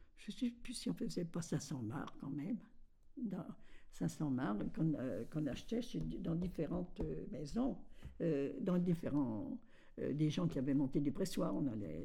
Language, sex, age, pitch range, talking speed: French, female, 60-79, 135-190 Hz, 180 wpm